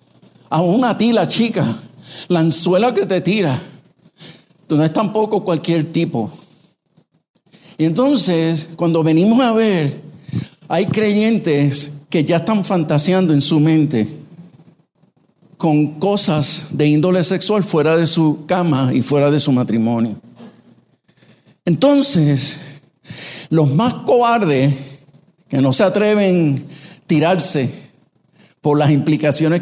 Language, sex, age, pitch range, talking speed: English, male, 50-69, 145-180 Hz, 120 wpm